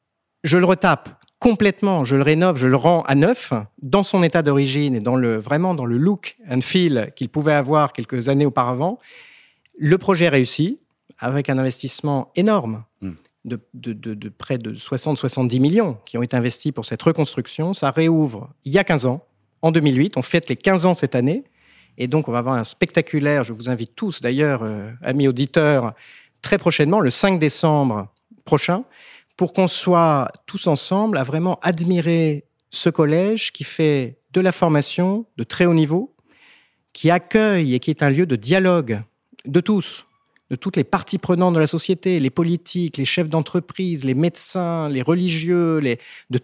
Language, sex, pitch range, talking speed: French, male, 130-180 Hz, 180 wpm